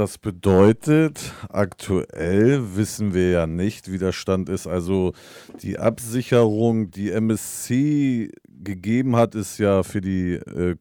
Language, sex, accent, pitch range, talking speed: German, male, German, 95-115 Hz, 130 wpm